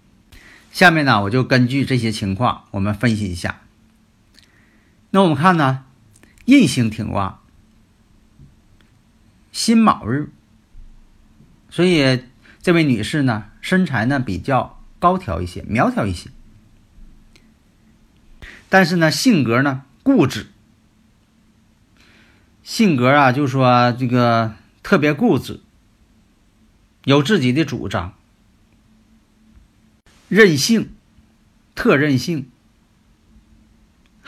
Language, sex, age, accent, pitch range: Chinese, male, 50-69, native, 105-145 Hz